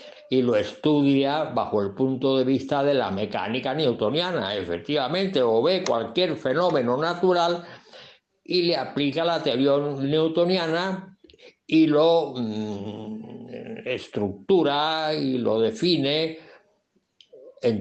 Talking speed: 105 wpm